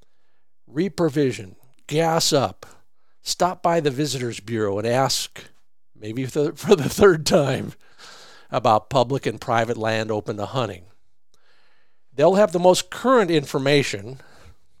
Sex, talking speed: male, 120 wpm